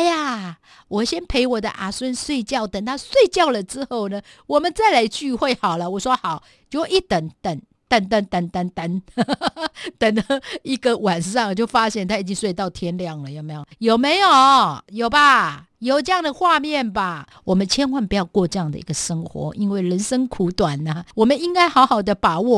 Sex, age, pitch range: female, 50-69, 190-275 Hz